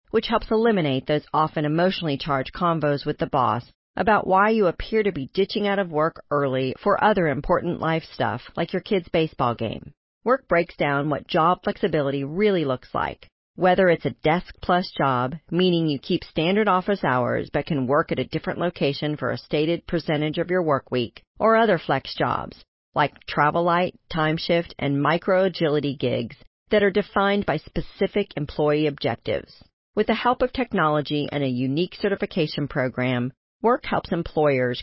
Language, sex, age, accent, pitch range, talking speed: English, female, 40-59, American, 145-185 Hz, 170 wpm